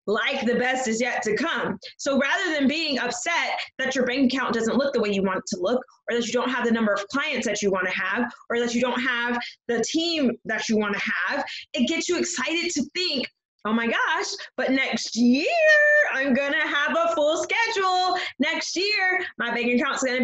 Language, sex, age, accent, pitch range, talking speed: English, female, 20-39, American, 240-310 Hz, 220 wpm